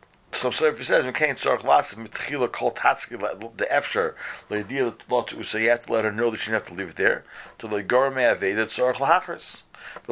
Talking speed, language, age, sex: 230 wpm, English, 40-59, male